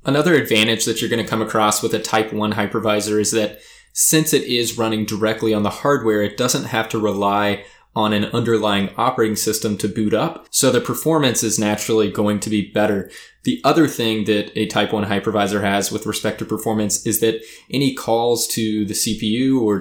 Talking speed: 200 wpm